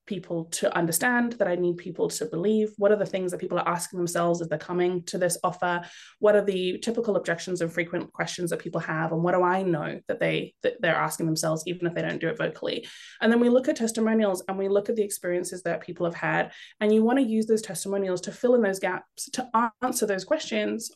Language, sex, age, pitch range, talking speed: English, female, 20-39, 175-220 Hz, 240 wpm